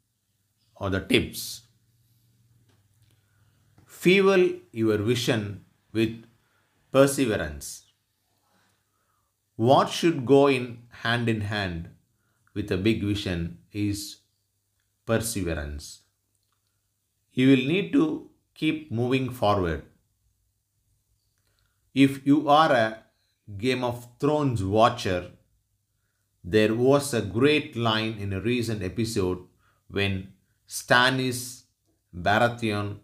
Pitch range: 100-115 Hz